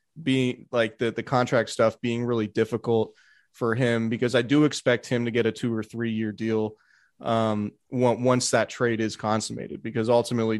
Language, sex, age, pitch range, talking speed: English, male, 20-39, 110-130 Hz, 180 wpm